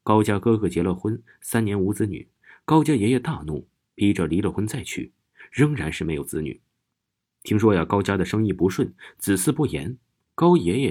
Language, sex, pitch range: Chinese, male, 90-120 Hz